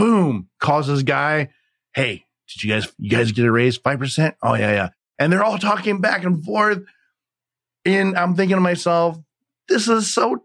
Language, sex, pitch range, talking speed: English, male, 130-175 Hz, 185 wpm